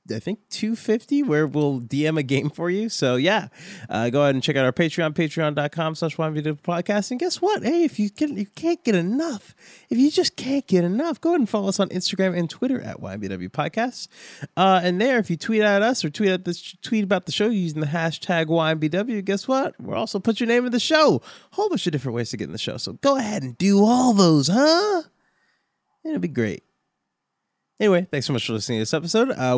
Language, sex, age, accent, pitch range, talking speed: English, male, 20-39, American, 150-230 Hz, 235 wpm